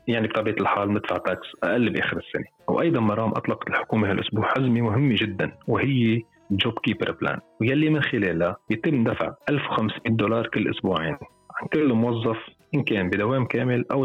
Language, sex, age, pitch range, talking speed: Arabic, male, 30-49, 100-125 Hz, 160 wpm